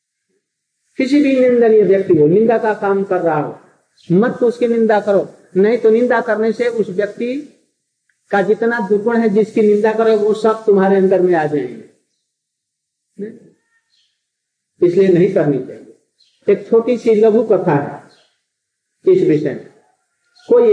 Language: Hindi